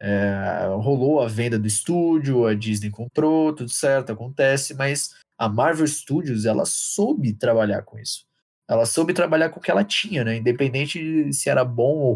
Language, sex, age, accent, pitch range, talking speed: Portuguese, male, 20-39, Brazilian, 120-155 Hz, 180 wpm